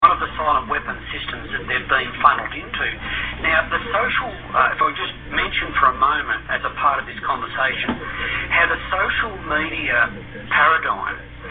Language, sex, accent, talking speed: English, male, Australian, 170 wpm